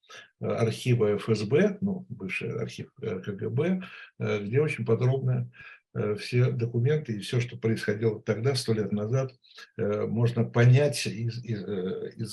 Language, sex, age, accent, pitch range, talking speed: Russian, male, 60-79, native, 110-130 Hz, 110 wpm